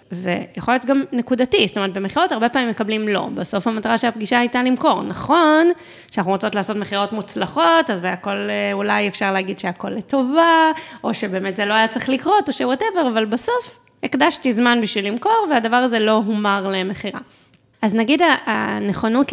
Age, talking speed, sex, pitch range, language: 20-39, 165 wpm, female, 200-250 Hz, Hebrew